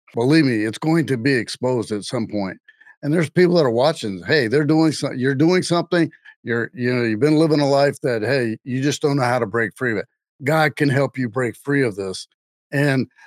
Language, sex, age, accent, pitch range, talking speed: English, male, 50-69, American, 120-155 Hz, 235 wpm